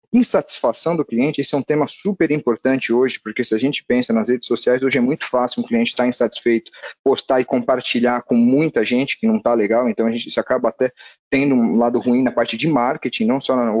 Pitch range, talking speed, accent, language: 120-170 Hz, 225 wpm, Brazilian, Portuguese